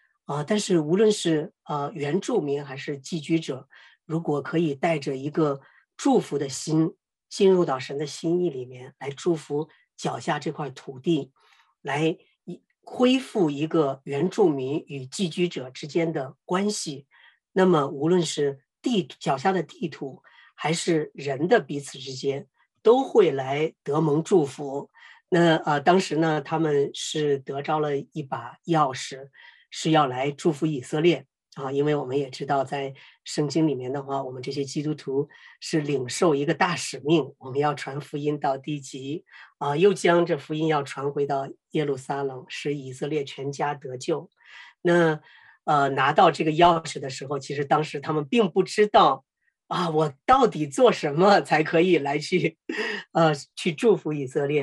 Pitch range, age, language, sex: 140-170 Hz, 50-69, Chinese, female